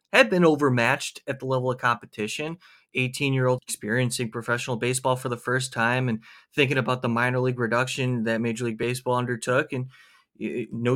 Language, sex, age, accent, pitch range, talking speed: English, male, 30-49, American, 125-185 Hz, 175 wpm